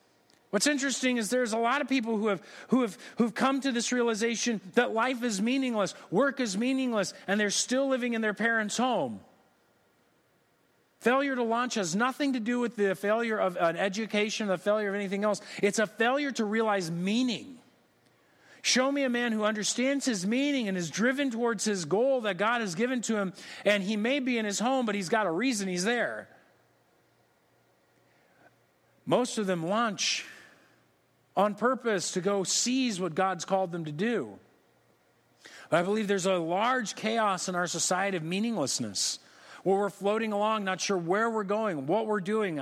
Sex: male